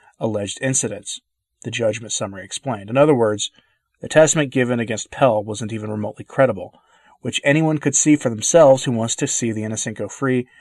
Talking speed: 180 wpm